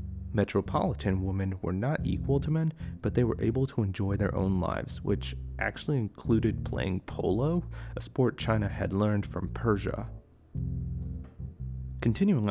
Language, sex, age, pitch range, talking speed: English, male, 30-49, 90-110 Hz, 140 wpm